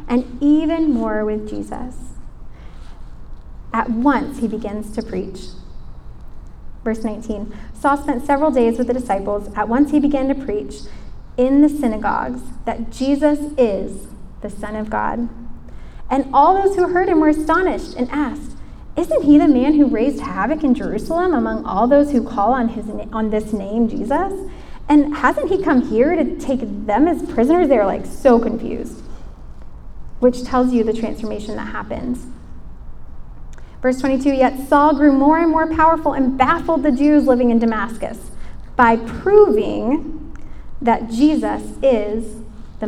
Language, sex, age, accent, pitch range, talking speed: English, female, 10-29, American, 220-290 Hz, 155 wpm